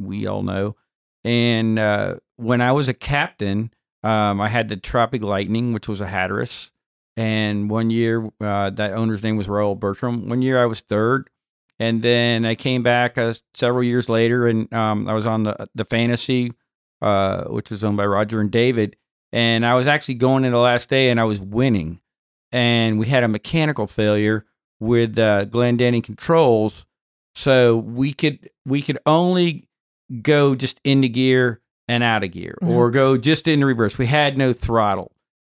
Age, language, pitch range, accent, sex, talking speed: 50-69, English, 110-130 Hz, American, male, 180 wpm